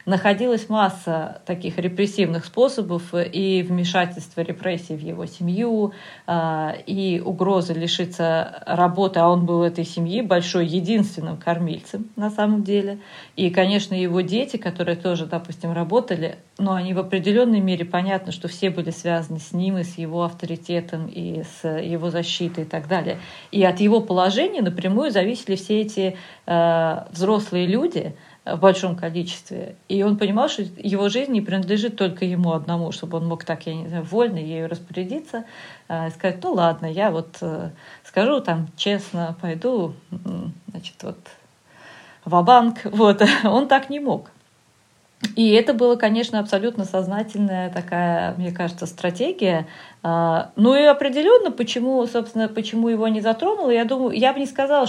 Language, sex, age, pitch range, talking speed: Russian, female, 40-59, 170-215 Hz, 150 wpm